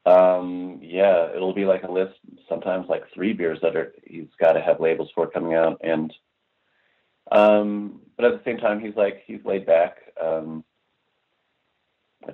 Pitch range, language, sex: 80-95 Hz, English, male